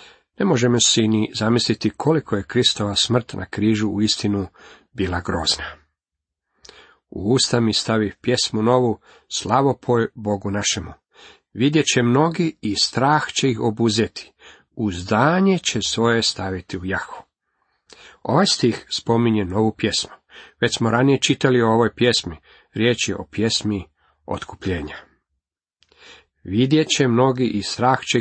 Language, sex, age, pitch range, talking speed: Croatian, male, 40-59, 100-125 Hz, 130 wpm